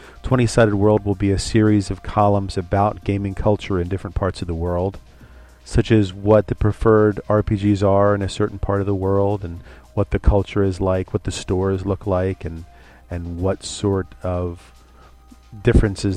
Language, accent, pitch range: English, American, 90-105 Hz